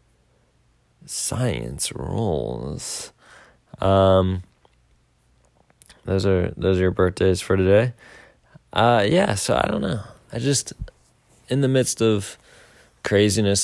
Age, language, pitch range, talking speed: 20-39, English, 90-110 Hz, 105 wpm